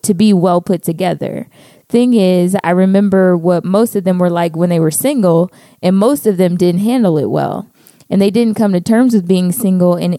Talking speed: 220 wpm